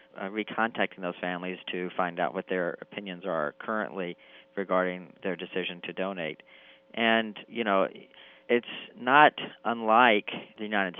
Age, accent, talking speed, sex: 40-59, American, 135 wpm, male